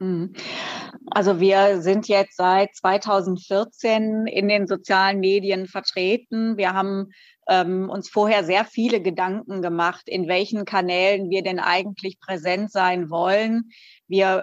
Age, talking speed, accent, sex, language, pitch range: 30-49, 125 wpm, German, female, German, 185-210 Hz